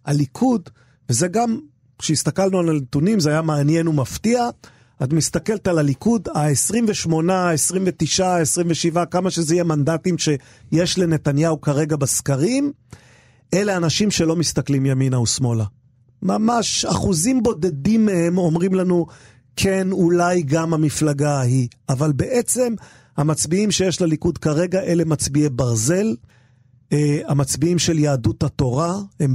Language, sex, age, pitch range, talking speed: Hebrew, male, 40-59, 145-185 Hz, 115 wpm